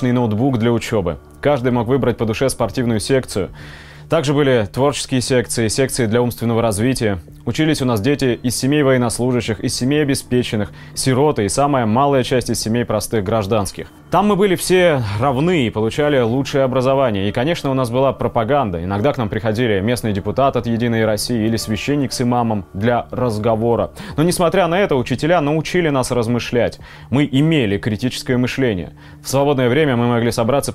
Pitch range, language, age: 110-140 Hz, Russian, 20-39